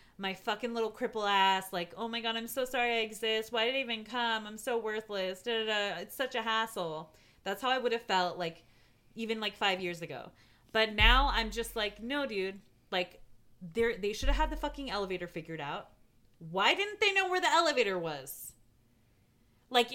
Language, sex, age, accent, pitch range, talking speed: English, female, 30-49, American, 170-230 Hz, 195 wpm